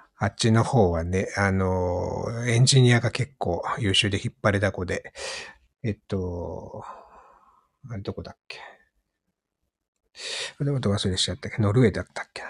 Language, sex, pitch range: Japanese, male, 100-125 Hz